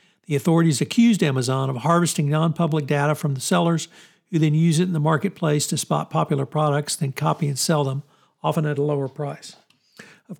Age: 60-79